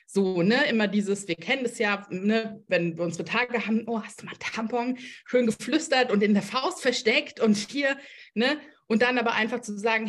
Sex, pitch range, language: female, 190-245 Hz, German